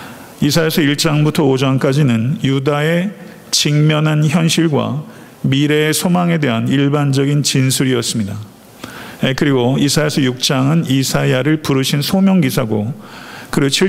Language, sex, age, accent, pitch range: Korean, male, 50-69, native, 130-165 Hz